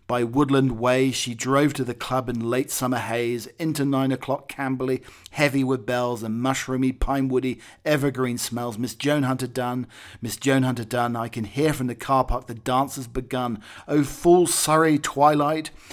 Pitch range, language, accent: 120-140 Hz, English, British